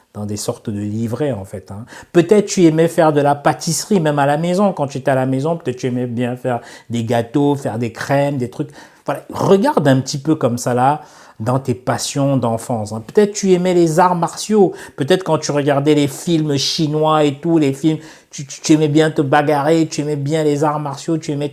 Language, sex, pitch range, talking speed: French, male, 125-160 Hz, 230 wpm